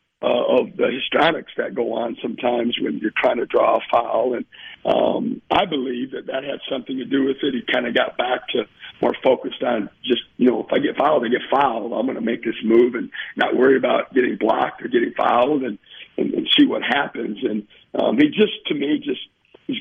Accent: American